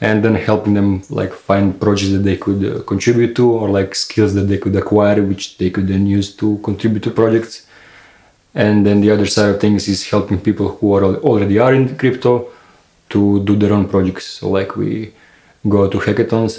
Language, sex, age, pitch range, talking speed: English, male, 20-39, 100-105 Hz, 205 wpm